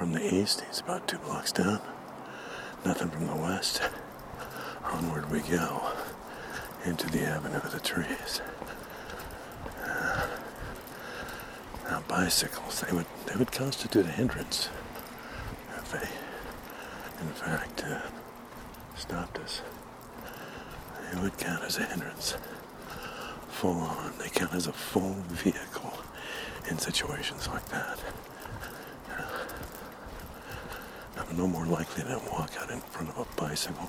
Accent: American